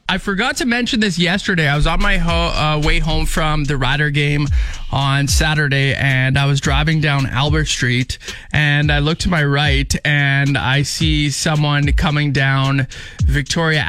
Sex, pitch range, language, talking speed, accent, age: male, 135-180 Hz, English, 170 wpm, American, 20-39